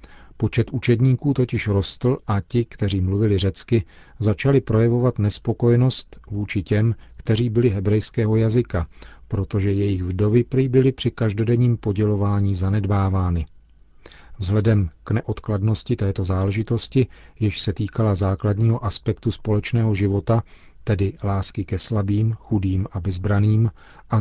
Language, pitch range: Czech, 95-115 Hz